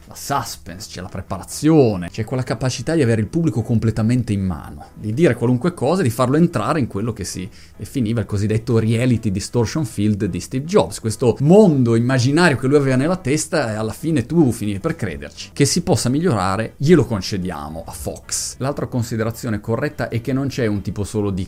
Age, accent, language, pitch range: 30-49, native, Italian, 95-135 Hz